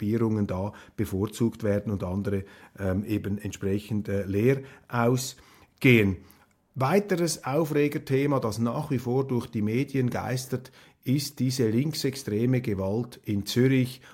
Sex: male